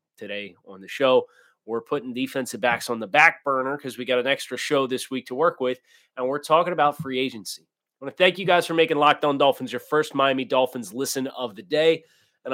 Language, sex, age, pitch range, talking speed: English, male, 30-49, 120-160 Hz, 230 wpm